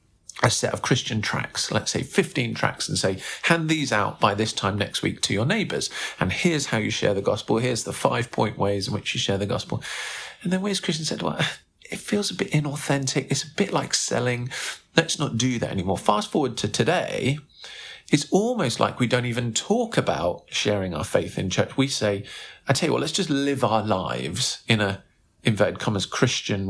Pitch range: 105-160 Hz